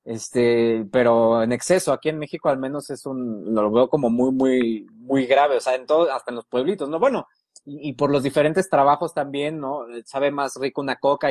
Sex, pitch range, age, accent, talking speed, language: male, 125-170 Hz, 30-49, Mexican, 220 wpm, Spanish